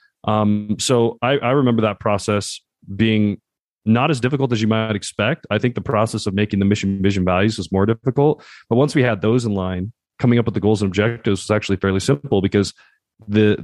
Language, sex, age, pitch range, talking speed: English, male, 30-49, 100-115 Hz, 210 wpm